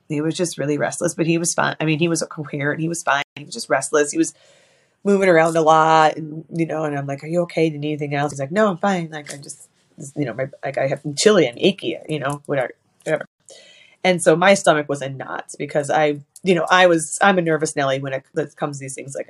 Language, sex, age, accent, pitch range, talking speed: English, female, 20-39, American, 150-175 Hz, 265 wpm